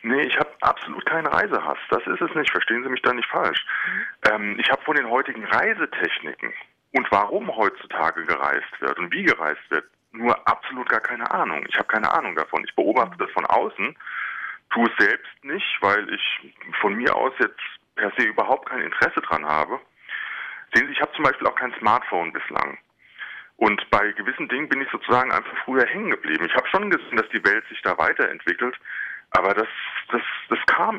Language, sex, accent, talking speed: German, male, German, 195 wpm